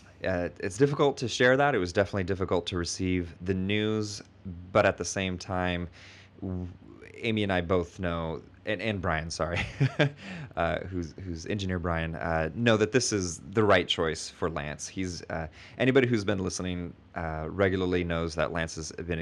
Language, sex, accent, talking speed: English, male, American, 175 wpm